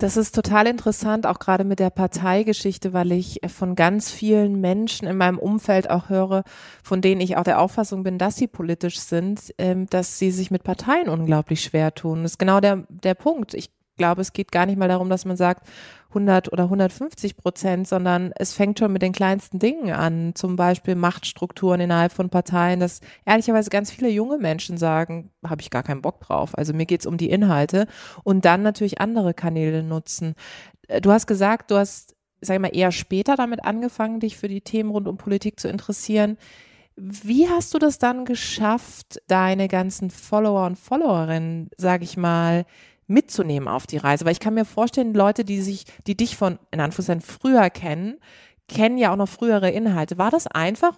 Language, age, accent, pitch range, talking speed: German, 20-39, German, 175-210 Hz, 195 wpm